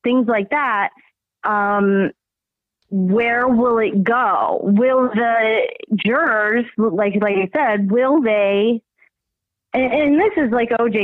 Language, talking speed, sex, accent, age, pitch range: English, 125 wpm, female, American, 30-49, 215-275 Hz